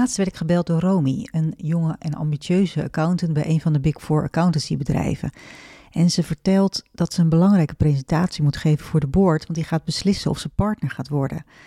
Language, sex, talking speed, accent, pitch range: Dutch, female, 210 wpm, Dutch, 155-185 Hz